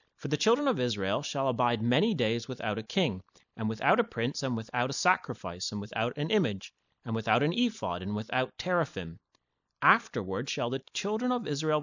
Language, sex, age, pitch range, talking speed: English, male, 30-49, 115-160 Hz, 190 wpm